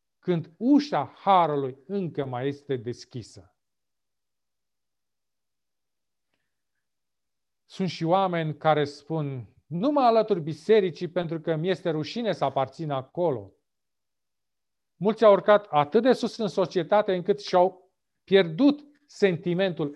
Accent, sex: native, male